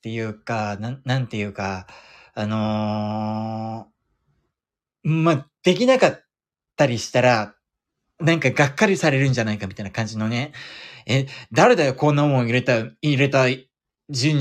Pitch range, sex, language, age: 115-165 Hz, male, Japanese, 20-39